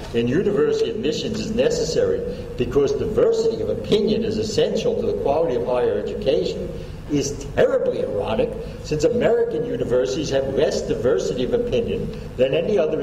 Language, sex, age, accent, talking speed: English, male, 60-79, American, 145 wpm